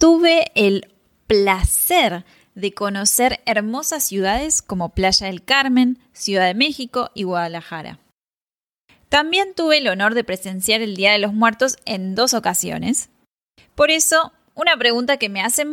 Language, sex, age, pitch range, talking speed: Spanish, female, 10-29, 195-275 Hz, 140 wpm